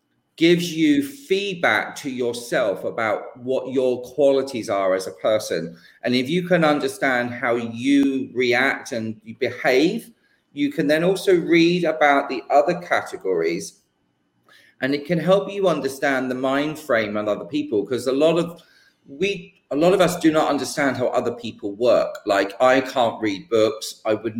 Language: English